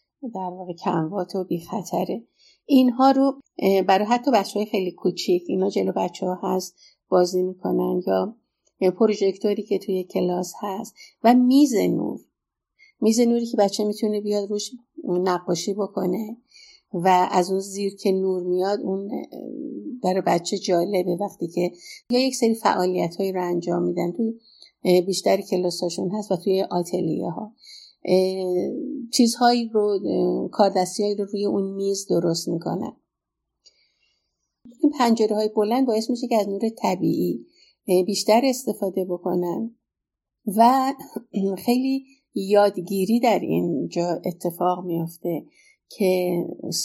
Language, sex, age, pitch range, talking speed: Persian, female, 50-69, 180-230 Hz, 125 wpm